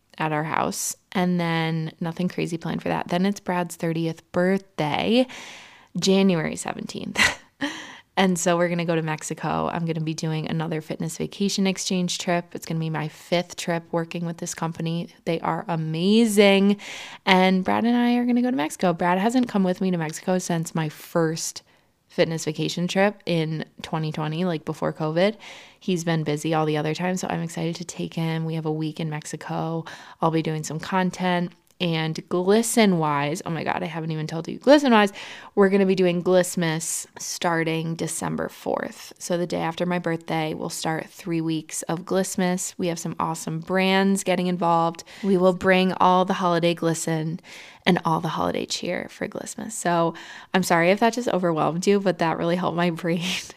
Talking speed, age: 190 wpm, 20-39